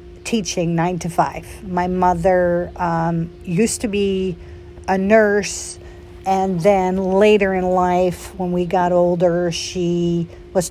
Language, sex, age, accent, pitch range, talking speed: English, female, 50-69, American, 170-210 Hz, 130 wpm